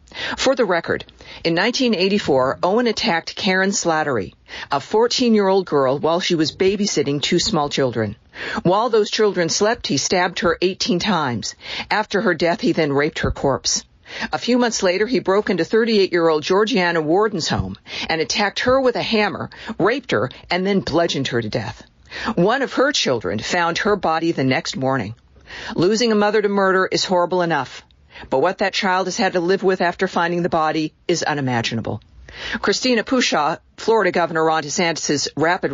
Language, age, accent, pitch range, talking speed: English, 50-69, American, 150-200 Hz, 170 wpm